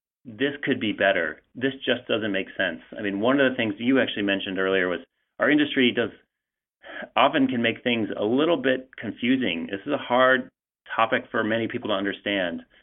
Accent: American